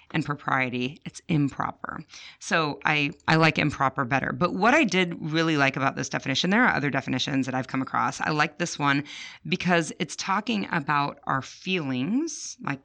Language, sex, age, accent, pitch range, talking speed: English, female, 30-49, American, 140-175 Hz, 175 wpm